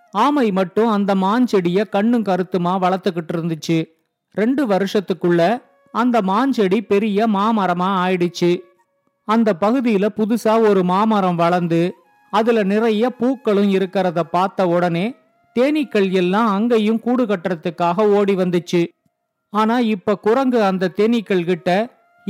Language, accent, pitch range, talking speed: Tamil, native, 185-230 Hz, 105 wpm